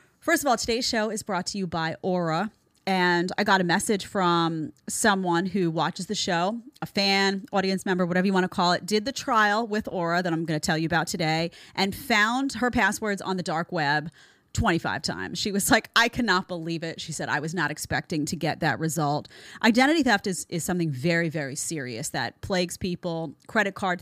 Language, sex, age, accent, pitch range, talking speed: English, female, 30-49, American, 165-195 Hz, 210 wpm